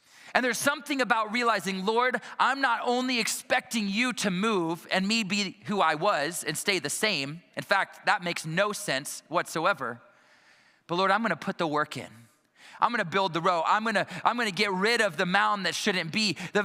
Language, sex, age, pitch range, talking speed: English, male, 20-39, 180-235 Hz, 200 wpm